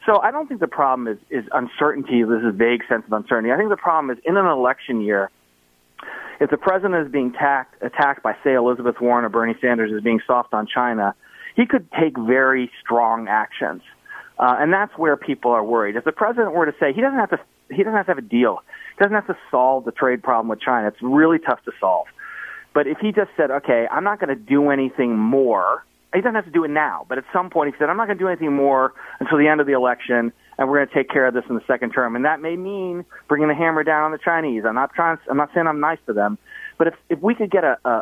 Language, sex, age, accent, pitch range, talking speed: English, male, 40-59, American, 120-165 Hz, 265 wpm